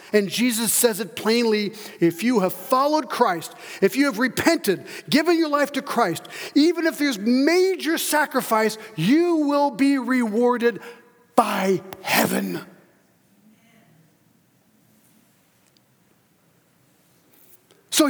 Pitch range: 185-285 Hz